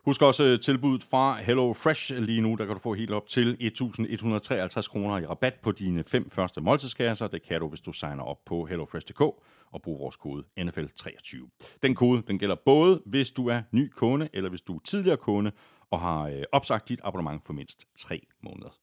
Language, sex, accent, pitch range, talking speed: Danish, male, native, 100-150 Hz, 200 wpm